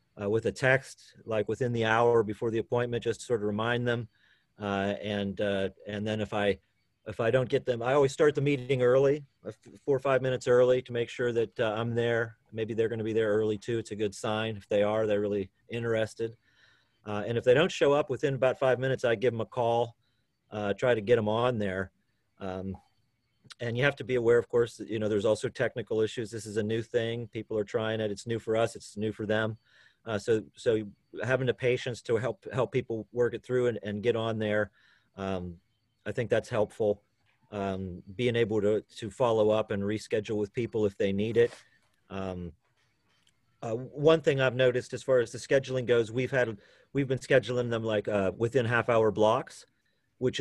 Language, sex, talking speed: English, male, 220 wpm